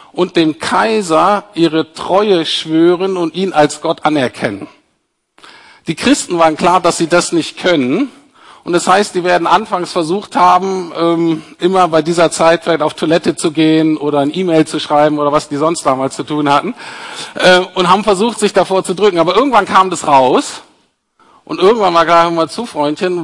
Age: 50-69